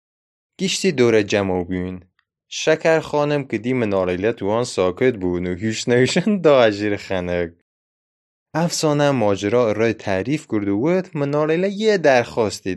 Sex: male